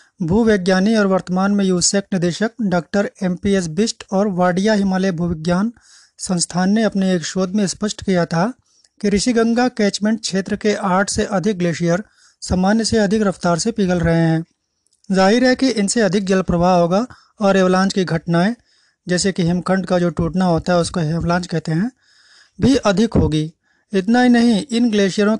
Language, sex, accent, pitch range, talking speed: Hindi, male, native, 175-210 Hz, 175 wpm